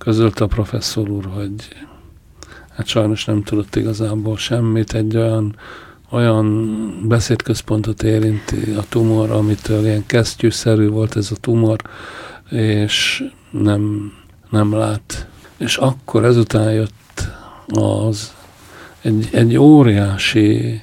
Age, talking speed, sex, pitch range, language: 50-69, 105 wpm, male, 105-115 Hz, Hungarian